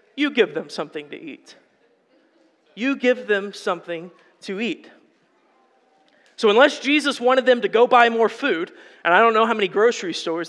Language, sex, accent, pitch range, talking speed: English, male, American, 170-240 Hz, 170 wpm